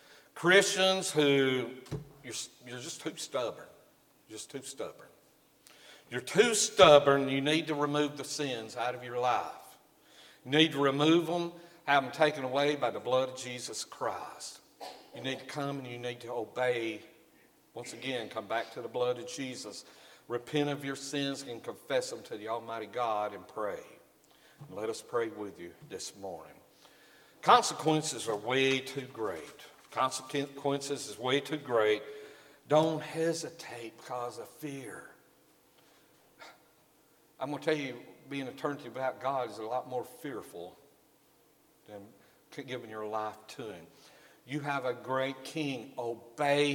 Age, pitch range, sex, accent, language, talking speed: 60-79, 125-150 Hz, male, American, English, 150 wpm